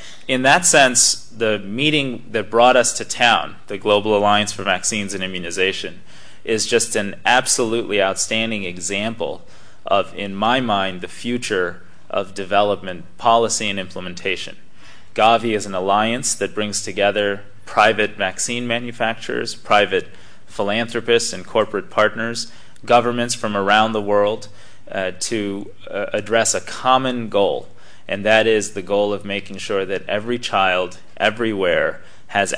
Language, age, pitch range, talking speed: English, 30-49, 100-115 Hz, 135 wpm